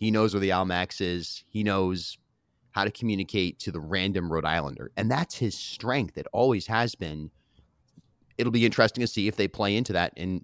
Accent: American